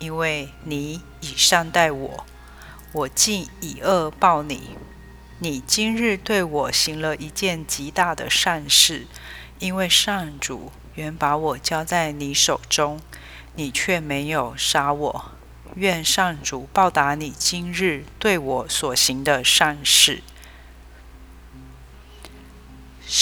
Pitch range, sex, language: 125-170 Hz, female, Chinese